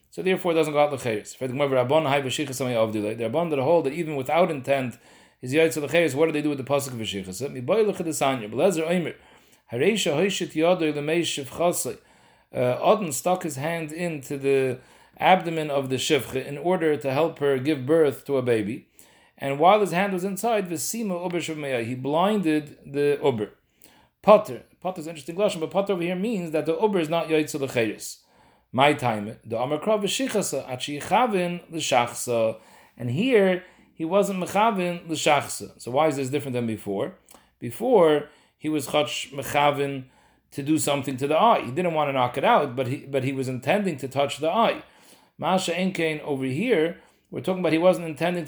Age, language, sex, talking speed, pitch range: 40-59, English, male, 160 wpm, 135-175 Hz